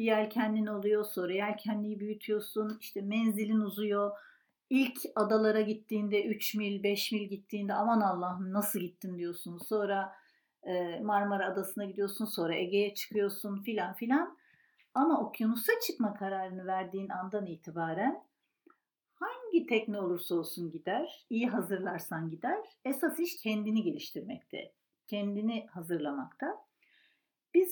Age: 50-69